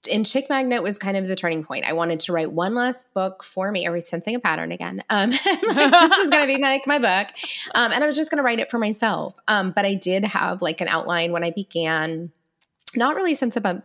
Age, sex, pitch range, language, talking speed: 20-39, female, 170-245 Hz, English, 250 wpm